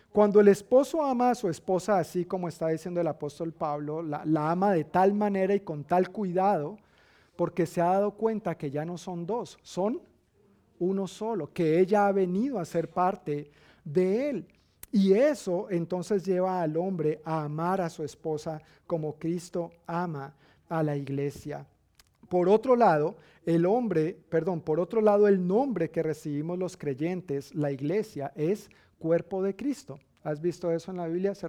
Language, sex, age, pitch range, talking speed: Spanish, male, 40-59, 155-195 Hz, 175 wpm